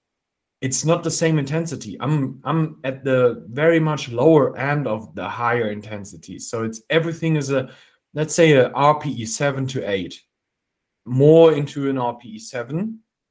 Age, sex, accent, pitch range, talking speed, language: 30-49, male, German, 120-160 Hz, 155 wpm, English